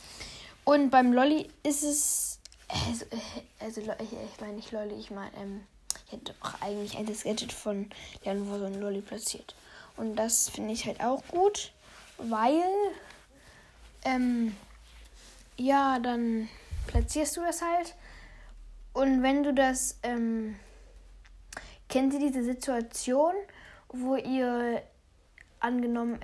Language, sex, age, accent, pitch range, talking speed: German, female, 10-29, German, 210-265 Hz, 125 wpm